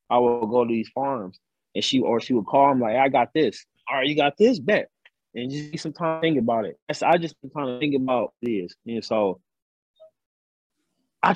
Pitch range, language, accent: 125-160 Hz, English, American